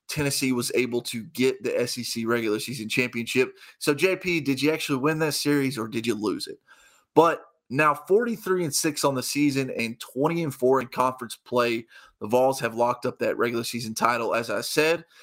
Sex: male